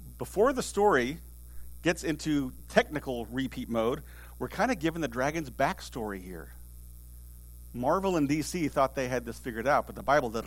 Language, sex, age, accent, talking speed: English, male, 50-69, American, 170 wpm